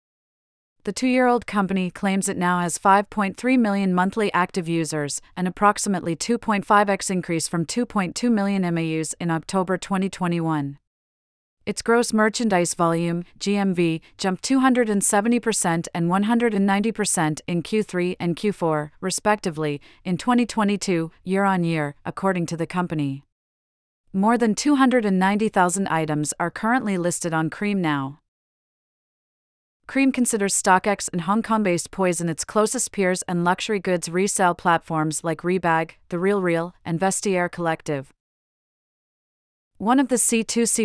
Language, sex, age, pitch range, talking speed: English, female, 40-59, 165-205 Hz, 120 wpm